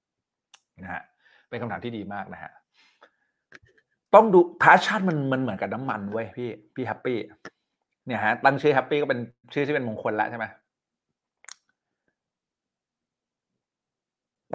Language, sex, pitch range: Thai, male, 110-150 Hz